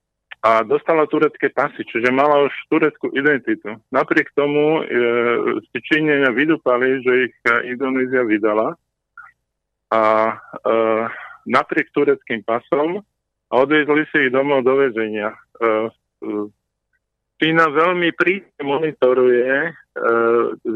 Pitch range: 120-150 Hz